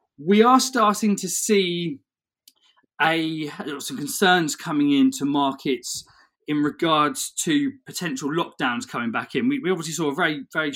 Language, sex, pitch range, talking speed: English, male, 135-205 Hz, 145 wpm